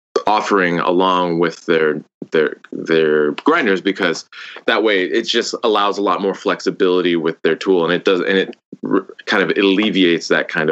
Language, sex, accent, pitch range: English, male, American, 80-100 Hz